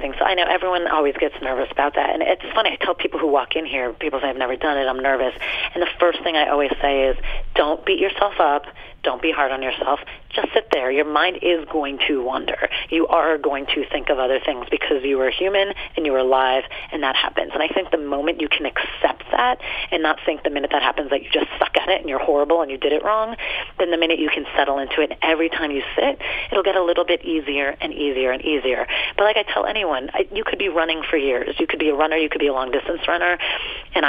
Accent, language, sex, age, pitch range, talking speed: American, English, female, 30-49, 140-170 Hz, 260 wpm